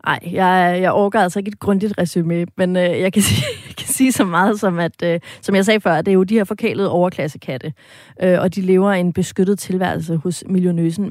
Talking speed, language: 220 wpm, Danish